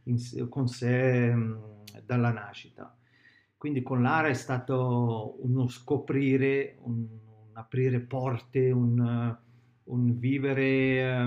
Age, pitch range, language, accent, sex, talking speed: 50-69, 120-135 Hz, Italian, native, male, 110 wpm